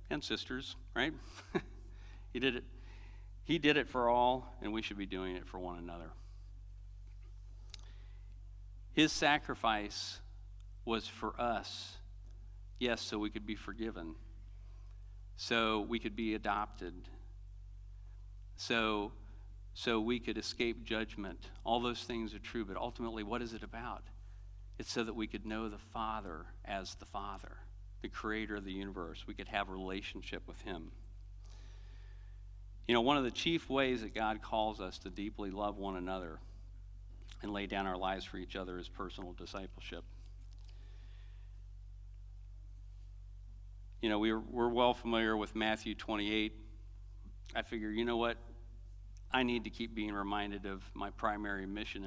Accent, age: American, 50-69